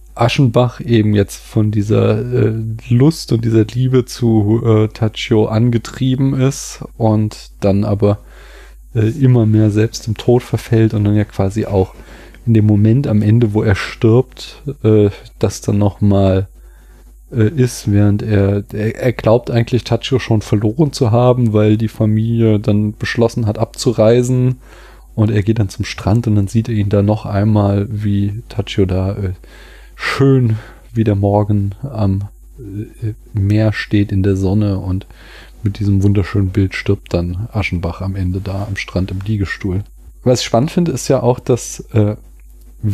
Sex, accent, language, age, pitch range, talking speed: male, German, German, 30-49, 100-115 Hz, 160 wpm